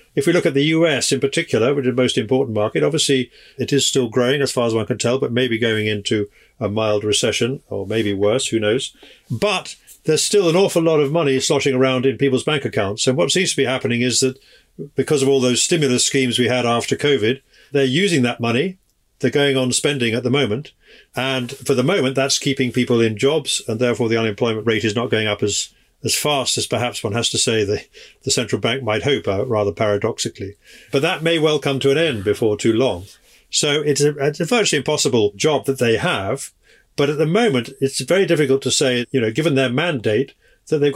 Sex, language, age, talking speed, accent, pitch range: male, English, 50-69, 225 wpm, British, 115-140 Hz